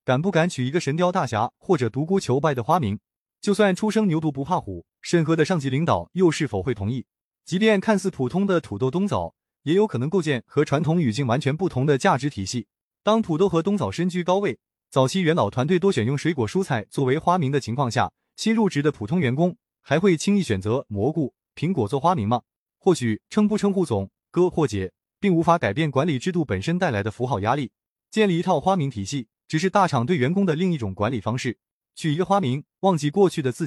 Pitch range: 125-185 Hz